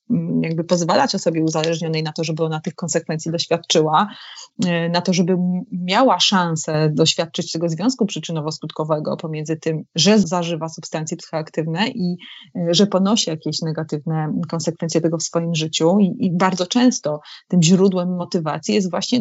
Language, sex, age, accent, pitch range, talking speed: Polish, female, 30-49, native, 170-215 Hz, 140 wpm